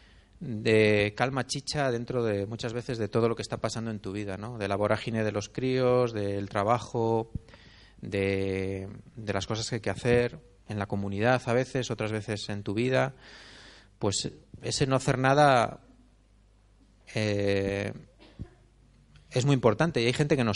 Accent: Spanish